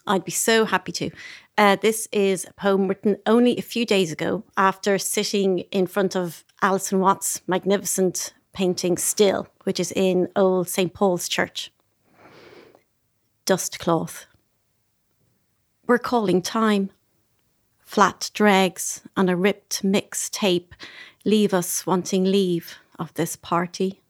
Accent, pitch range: British, 180-220 Hz